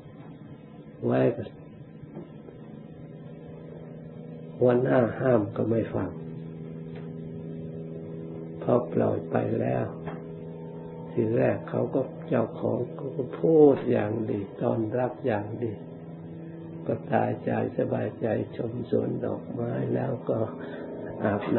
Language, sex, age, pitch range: Thai, male, 60-79, 75-120 Hz